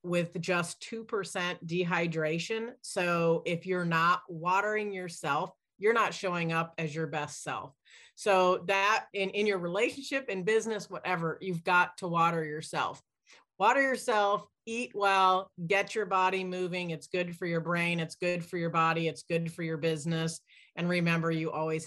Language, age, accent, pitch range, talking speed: English, 40-59, American, 165-195 Hz, 160 wpm